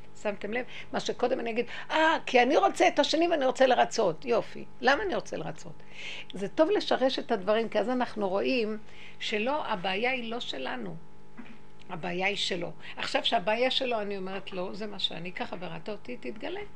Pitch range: 210-290 Hz